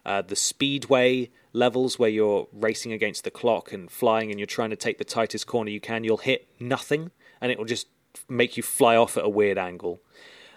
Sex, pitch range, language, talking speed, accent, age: male, 110-145 Hz, English, 215 wpm, British, 20-39